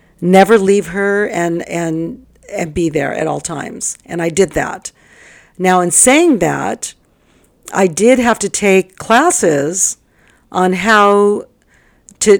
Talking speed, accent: 135 wpm, American